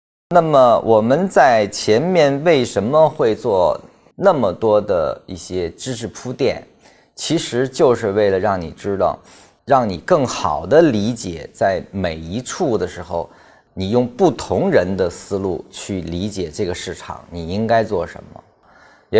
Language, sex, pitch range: Chinese, male, 95-125 Hz